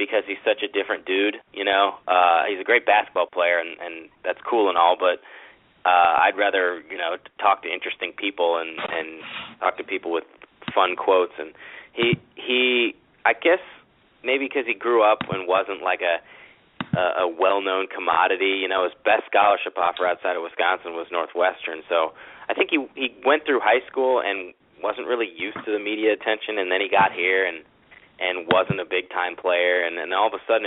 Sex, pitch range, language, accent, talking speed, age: male, 90-110 Hz, English, American, 195 wpm, 30-49